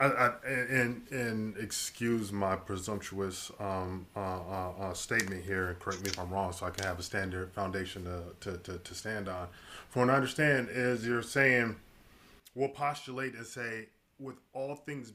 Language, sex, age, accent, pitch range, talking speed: English, male, 20-39, American, 110-145 Hz, 175 wpm